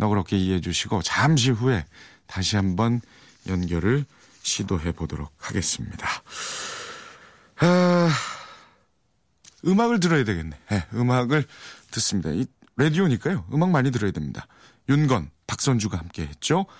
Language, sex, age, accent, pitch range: Korean, male, 40-59, native, 100-150 Hz